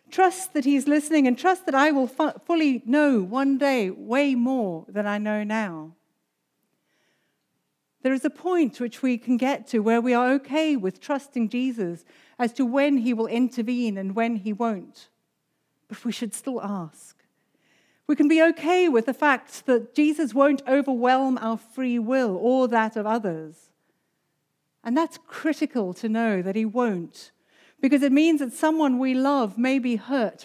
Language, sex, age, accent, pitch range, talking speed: English, female, 50-69, British, 210-275 Hz, 170 wpm